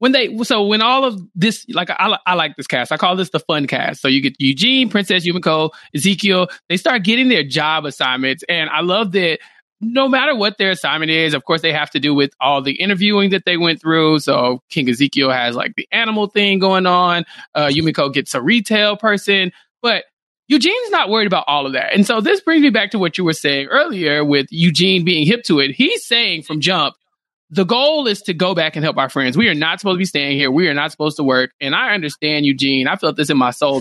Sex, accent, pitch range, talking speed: male, American, 150-215 Hz, 240 wpm